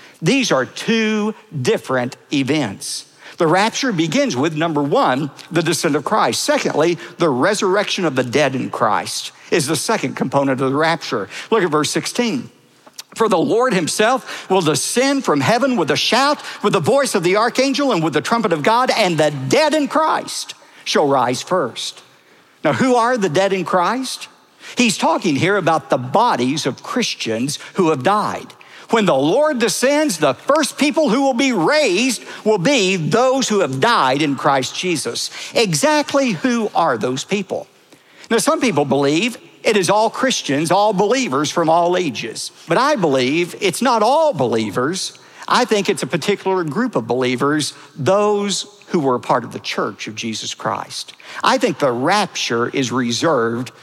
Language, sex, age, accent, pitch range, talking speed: English, male, 60-79, American, 150-250 Hz, 170 wpm